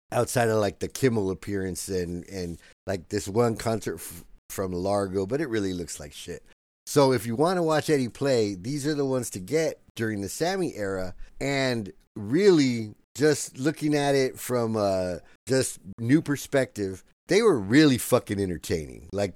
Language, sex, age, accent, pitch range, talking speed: English, male, 50-69, American, 100-135 Hz, 175 wpm